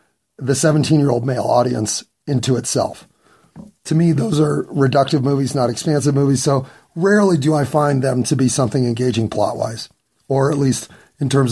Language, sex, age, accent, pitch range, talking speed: English, male, 30-49, American, 130-165 Hz, 160 wpm